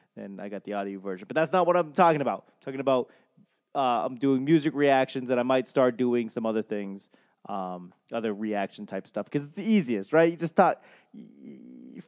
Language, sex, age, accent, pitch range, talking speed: English, male, 20-39, American, 130-170 Hz, 215 wpm